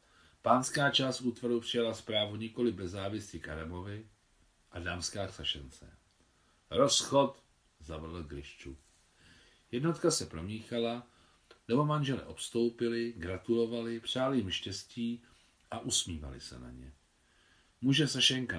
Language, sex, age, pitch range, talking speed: Czech, male, 40-59, 85-120 Hz, 105 wpm